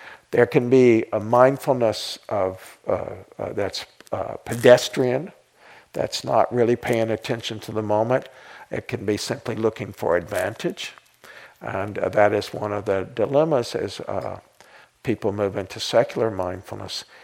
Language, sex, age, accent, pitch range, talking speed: English, male, 60-79, American, 110-125 Hz, 145 wpm